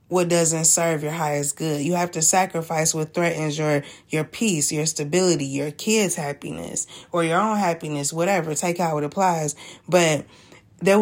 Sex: female